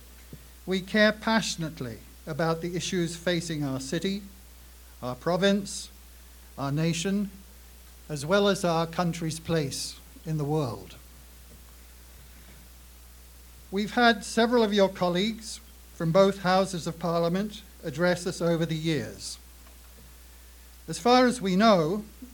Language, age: English, 50-69